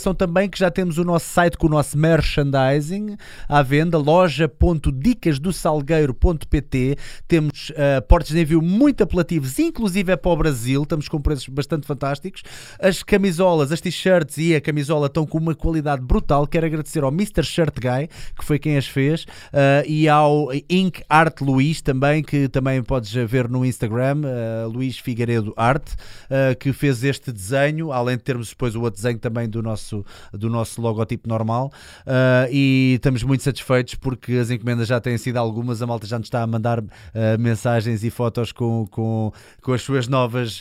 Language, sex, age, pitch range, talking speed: Portuguese, male, 20-39, 115-150 Hz, 170 wpm